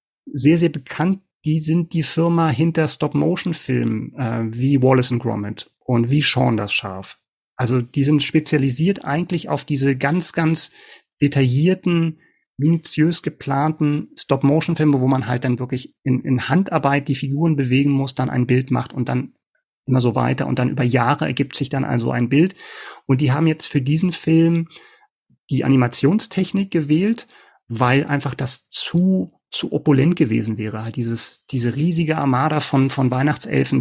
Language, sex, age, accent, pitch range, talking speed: German, male, 40-59, German, 125-155 Hz, 155 wpm